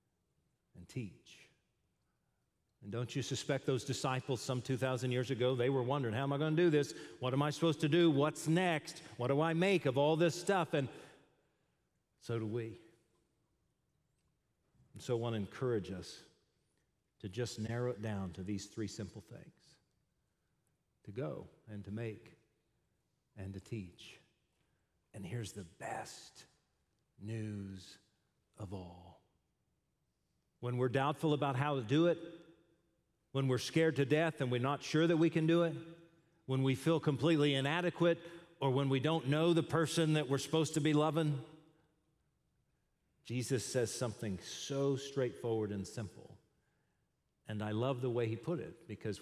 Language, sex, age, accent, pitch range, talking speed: English, male, 50-69, American, 110-150 Hz, 160 wpm